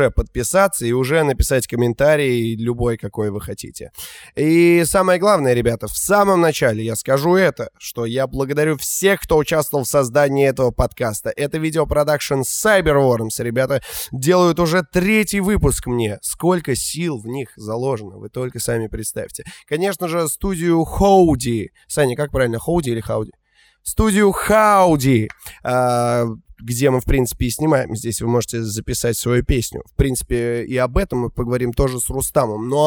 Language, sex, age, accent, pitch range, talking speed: Russian, male, 20-39, native, 115-155 Hz, 150 wpm